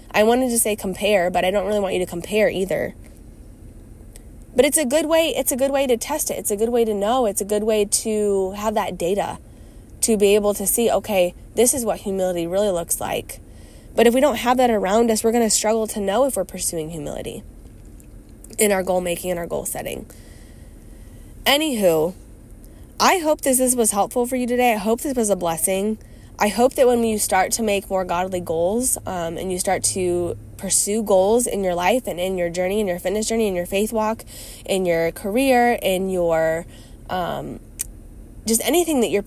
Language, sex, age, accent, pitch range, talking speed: English, female, 20-39, American, 180-230 Hz, 210 wpm